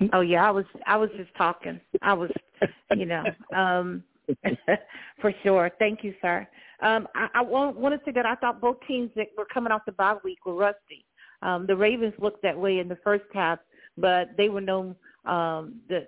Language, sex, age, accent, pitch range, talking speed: English, female, 50-69, American, 175-210 Hz, 200 wpm